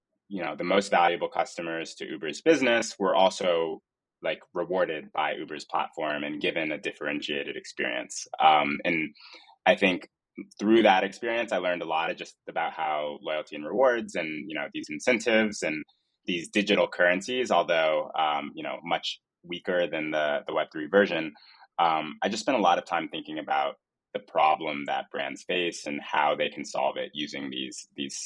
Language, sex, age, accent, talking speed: English, male, 20-39, American, 175 wpm